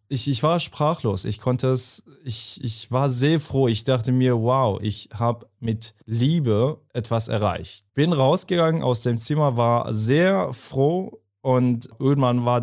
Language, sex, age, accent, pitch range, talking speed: German, male, 20-39, German, 115-140 Hz, 155 wpm